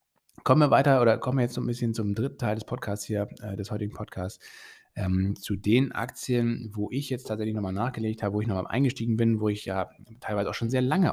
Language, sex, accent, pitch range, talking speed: German, male, German, 100-120 Hz, 230 wpm